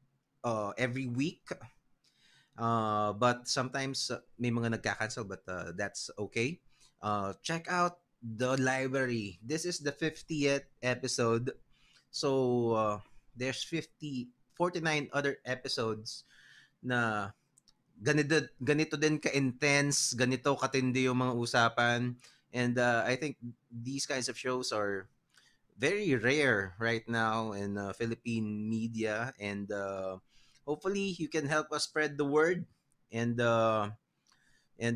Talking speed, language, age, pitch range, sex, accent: 120 wpm, English, 20-39, 110-140 Hz, male, Filipino